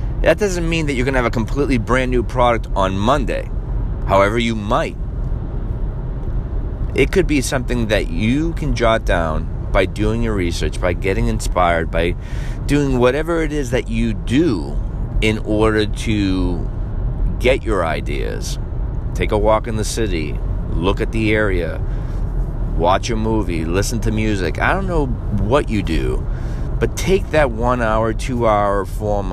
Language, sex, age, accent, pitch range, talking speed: English, male, 30-49, American, 95-120 Hz, 160 wpm